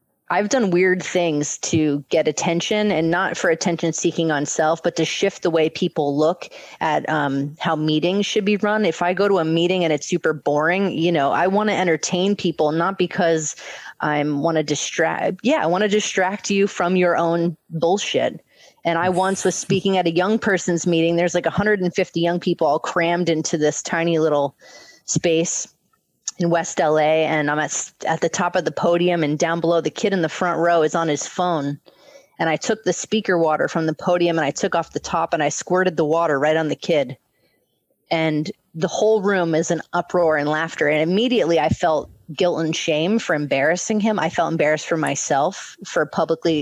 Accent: American